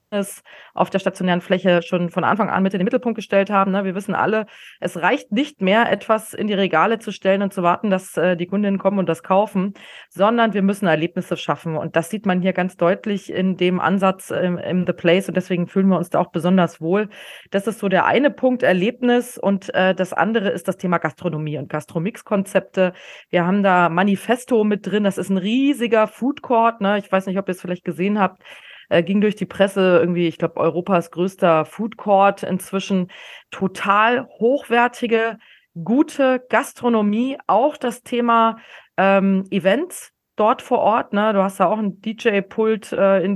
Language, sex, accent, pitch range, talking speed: German, female, German, 175-215 Hz, 185 wpm